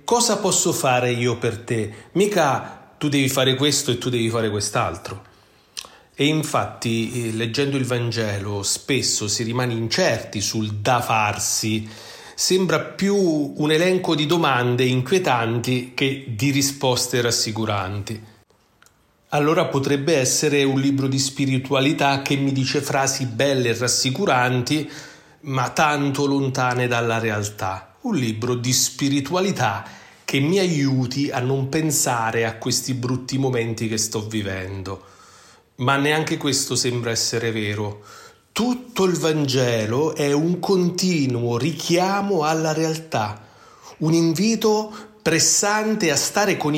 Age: 40-59